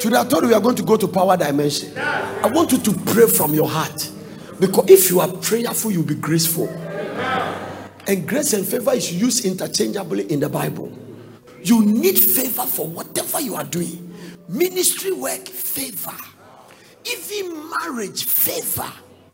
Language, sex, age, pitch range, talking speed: English, male, 50-69, 185-285 Hz, 160 wpm